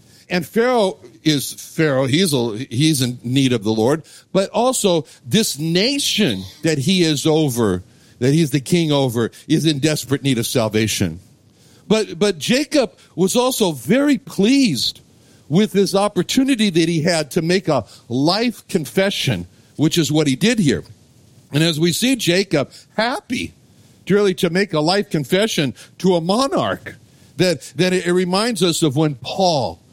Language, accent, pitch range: English, American, 130-185 Hz